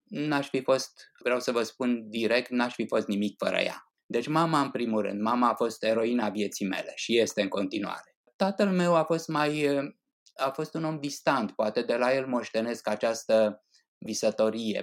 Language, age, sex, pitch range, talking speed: Romanian, 20-39, male, 110-160 Hz, 185 wpm